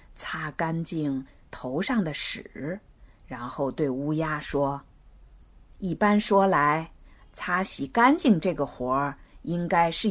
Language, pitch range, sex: Chinese, 150-225 Hz, female